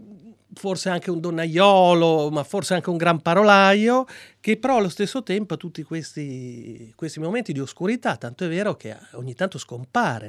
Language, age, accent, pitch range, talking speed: Italian, 40-59, native, 150-200 Hz, 170 wpm